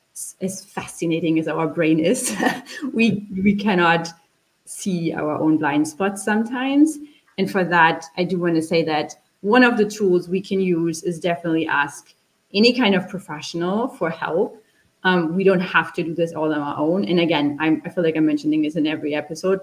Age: 30-49